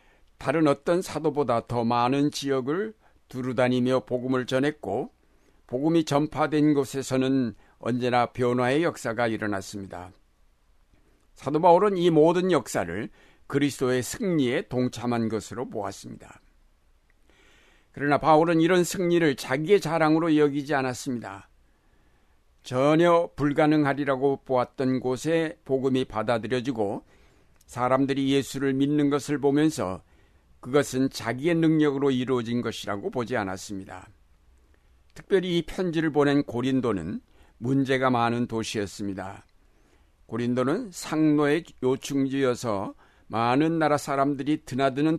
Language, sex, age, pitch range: Korean, male, 60-79, 110-150 Hz